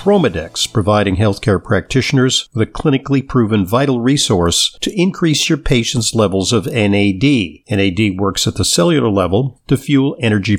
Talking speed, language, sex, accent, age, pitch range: 140 wpm, English, male, American, 50-69, 105-135 Hz